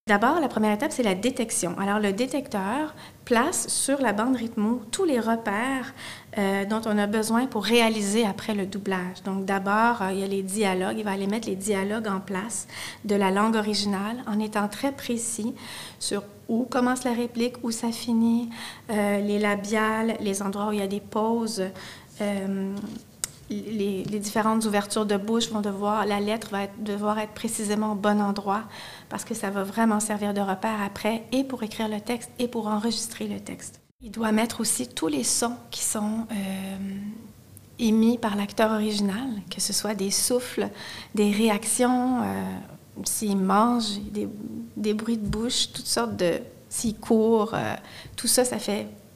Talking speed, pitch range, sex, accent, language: 175 wpm, 200-230 Hz, female, Canadian, French